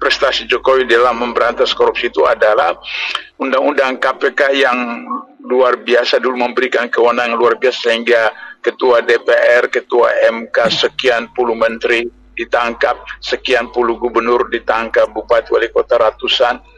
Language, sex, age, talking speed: Indonesian, male, 50-69, 120 wpm